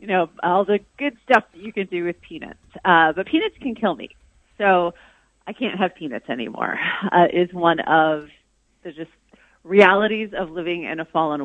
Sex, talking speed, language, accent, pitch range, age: female, 190 wpm, English, American, 165-215 Hz, 30-49